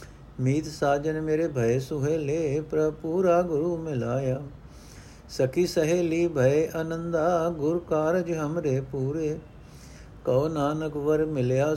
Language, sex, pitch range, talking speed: Punjabi, male, 130-165 Hz, 105 wpm